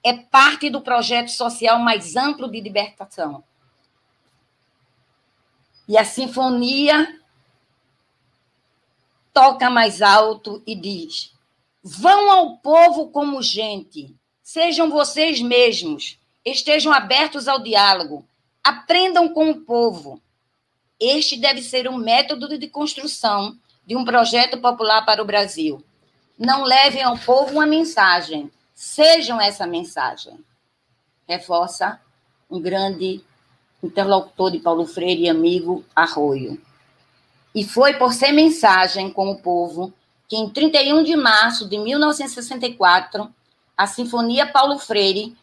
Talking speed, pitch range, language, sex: 110 wpm, 175-275 Hz, Portuguese, female